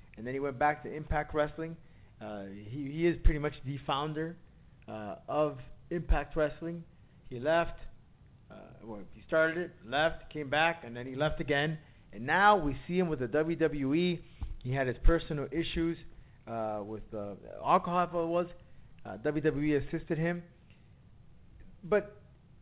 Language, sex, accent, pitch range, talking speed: English, male, American, 125-165 Hz, 150 wpm